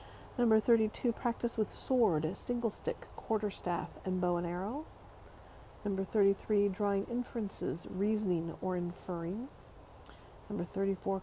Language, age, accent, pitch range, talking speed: English, 40-59, American, 190-225 Hz, 110 wpm